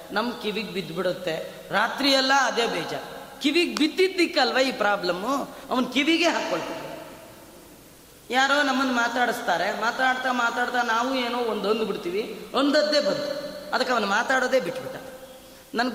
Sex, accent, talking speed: female, native, 115 wpm